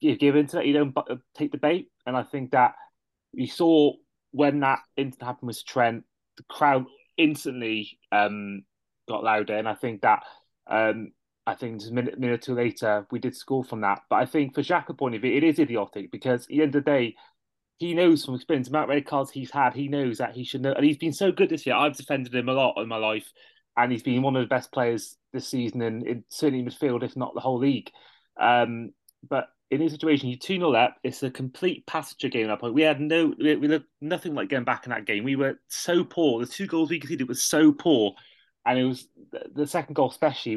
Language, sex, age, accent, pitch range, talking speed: English, male, 20-39, British, 120-150 Hz, 240 wpm